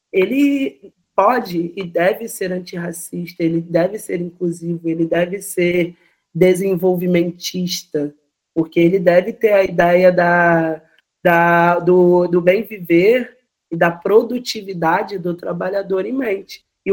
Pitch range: 180-225 Hz